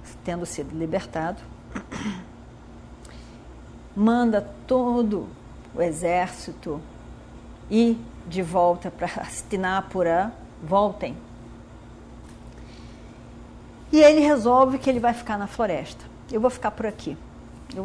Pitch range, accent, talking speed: 180-255 Hz, Brazilian, 95 wpm